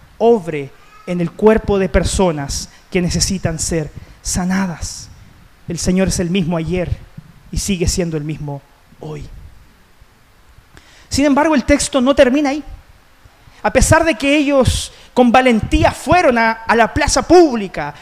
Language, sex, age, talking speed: Spanish, male, 30-49, 140 wpm